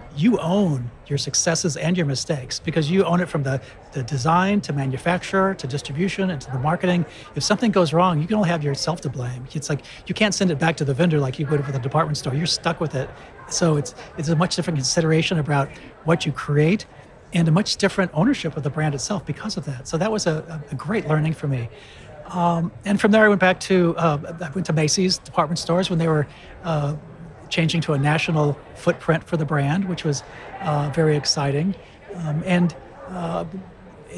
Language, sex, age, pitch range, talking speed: English, male, 40-59, 145-175 Hz, 215 wpm